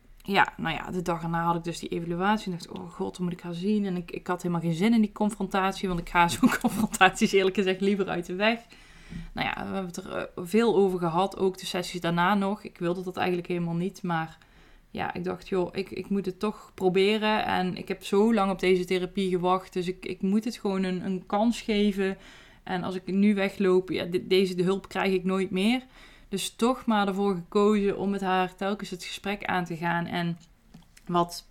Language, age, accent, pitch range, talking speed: Dutch, 20-39, Dutch, 175-200 Hz, 225 wpm